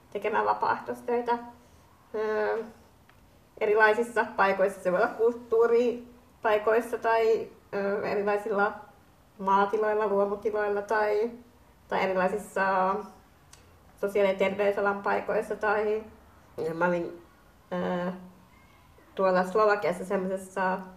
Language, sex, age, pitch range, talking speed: Finnish, female, 20-39, 190-220 Hz, 65 wpm